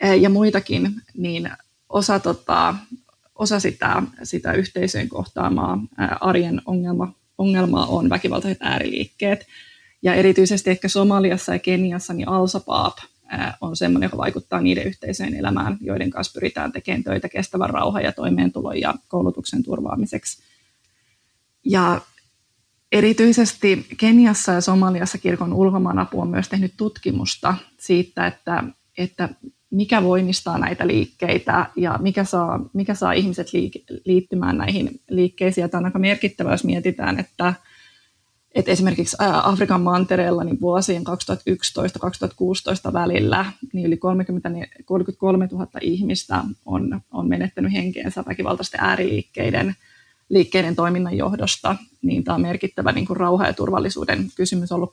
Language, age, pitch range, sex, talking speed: Finnish, 20-39, 175-195 Hz, female, 125 wpm